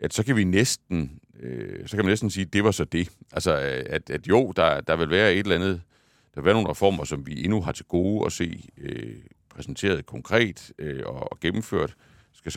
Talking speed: 230 wpm